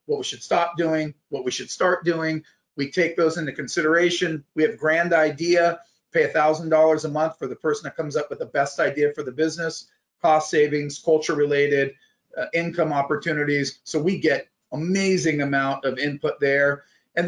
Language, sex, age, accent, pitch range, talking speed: English, male, 40-59, American, 140-170 Hz, 175 wpm